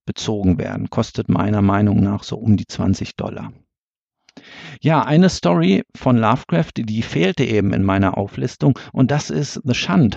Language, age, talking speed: German, 50-69, 160 wpm